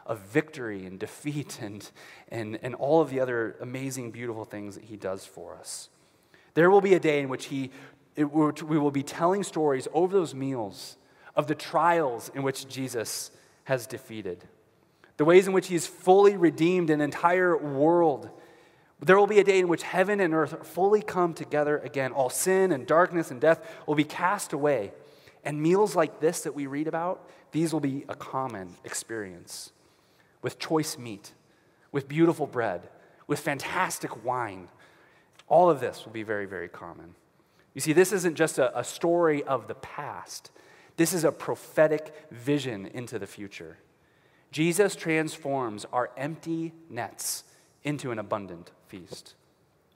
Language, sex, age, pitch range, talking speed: English, male, 30-49, 135-165 Hz, 165 wpm